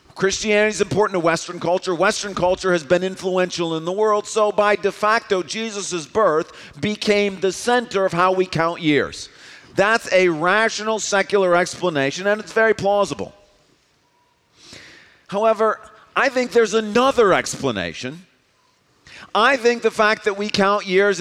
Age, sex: 50-69, male